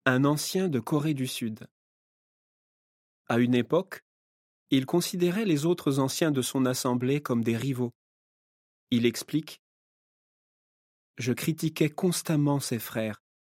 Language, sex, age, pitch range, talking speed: French, male, 30-49, 120-145 Hz, 120 wpm